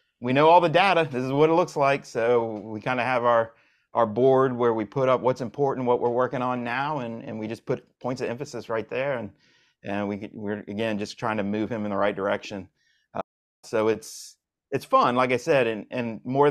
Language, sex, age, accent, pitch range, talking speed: English, male, 30-49, American, 100-125 Hz, 235 wpm